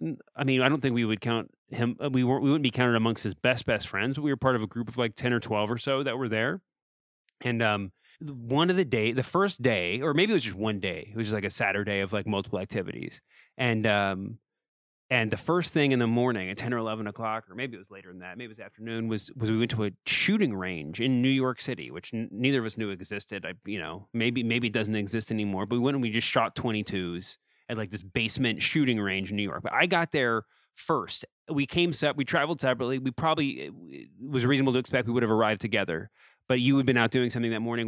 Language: English